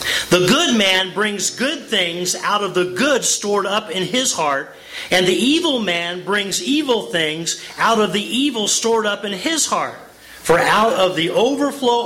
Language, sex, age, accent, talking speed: English, male, 40-59, American, 180 wpm